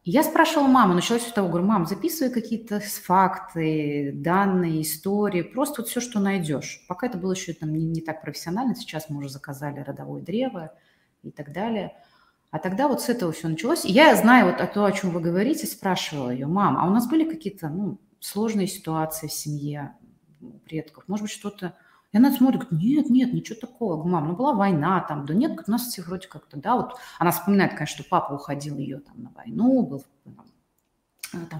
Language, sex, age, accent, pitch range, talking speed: Russian, female, 30-49, native, 155-225 Hz, 195 wpm